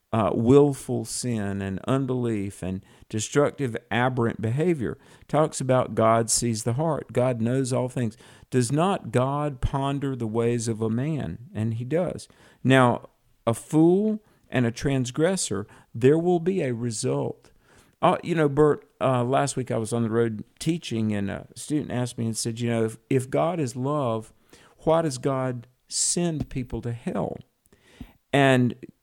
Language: English